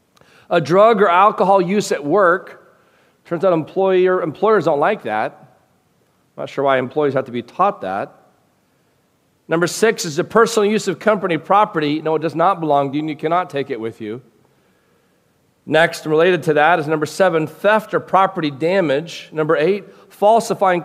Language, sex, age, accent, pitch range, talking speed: English, male, 40-59, American, 160-215 Hz, 170 wpm